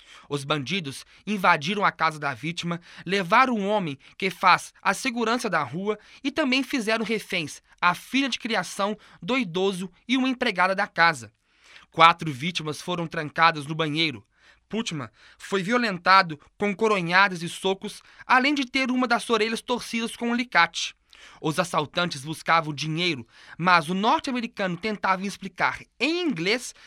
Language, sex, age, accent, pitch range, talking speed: Portuguese, male, 20-39, Brazilian, 165-230 Hz, 145 wpm